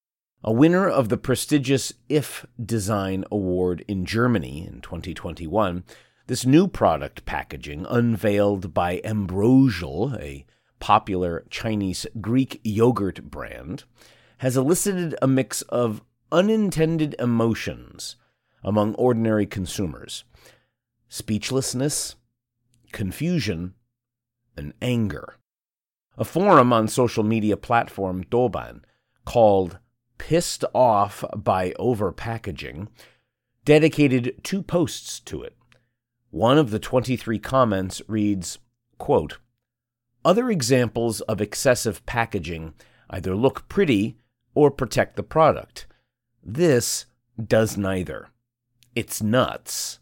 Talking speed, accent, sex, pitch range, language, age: 95 wpm, American, male, 100-125 Hz, English, 40-59